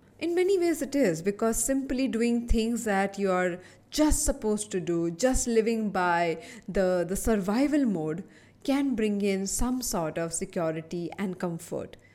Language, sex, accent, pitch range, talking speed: English, female, Indian, 180-230 Hz, 160 wpm